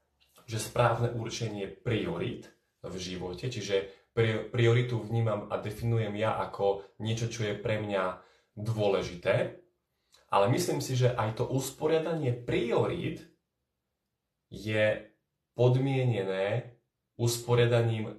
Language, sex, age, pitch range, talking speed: Slovak, male, 30-49, 100-125 Hz, 100 wpm